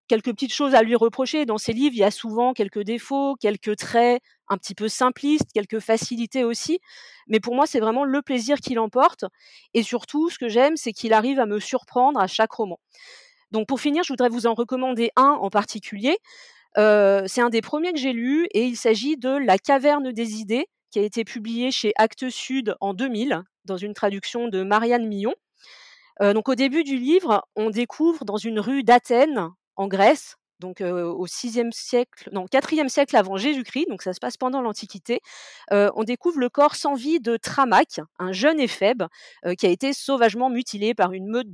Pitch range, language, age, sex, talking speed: 205-275 Hz, French, 40-59, female, 200 wpm